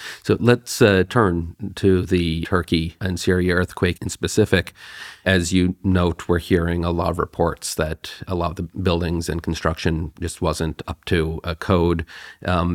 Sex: male